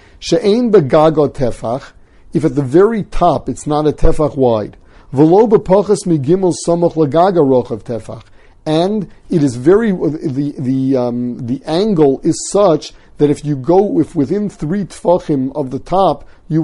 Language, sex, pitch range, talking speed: English, male, 135-170 Hz, 165 wpm